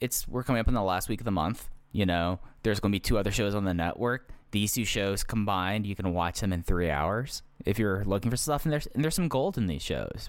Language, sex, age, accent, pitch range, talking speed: English, male, 20-39, American, 90-110 Hz, 275 wpm